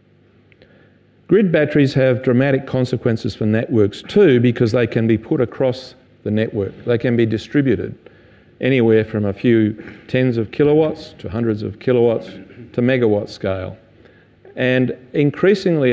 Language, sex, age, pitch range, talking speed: English, male, 40-59, 105-125 Hz, 135 wpm